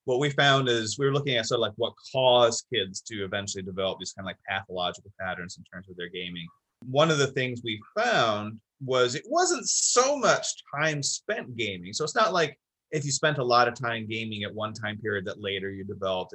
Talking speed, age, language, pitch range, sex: 230 wpm, 30-49, English, 100-140 Hz, male